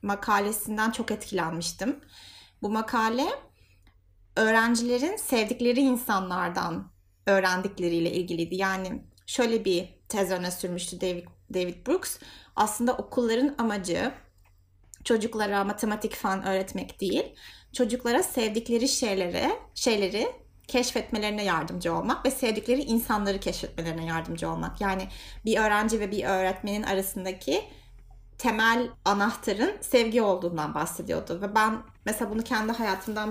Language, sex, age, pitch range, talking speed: Turkish, female, 30-49, 190-245 Hz, 105 wpm